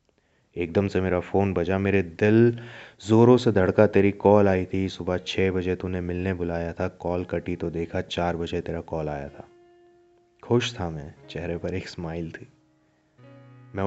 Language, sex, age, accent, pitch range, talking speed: Hindi, male, 20-39, native, 90-105 Hz, 175 wpm